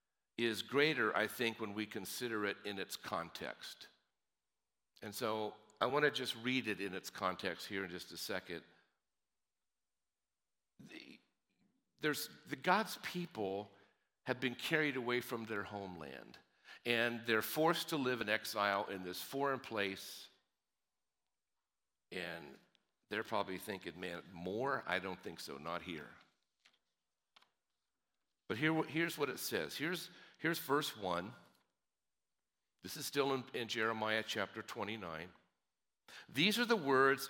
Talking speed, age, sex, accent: 130 wpm, 50-69, male, American